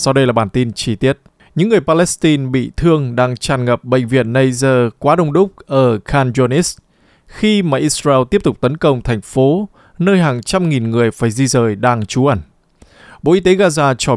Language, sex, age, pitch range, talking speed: Vietnamese, male, 20-39, 125-165 Hz, 205 wpm